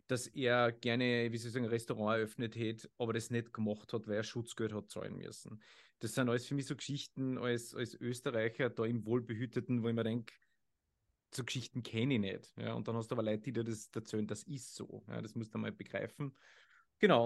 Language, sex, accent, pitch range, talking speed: German, male, Austrian, 120-170 Hz, 220 wpm